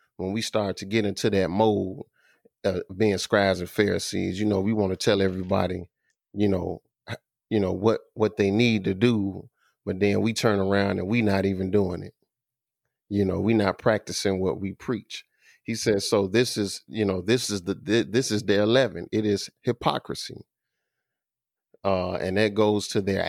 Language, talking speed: English, 190 wpm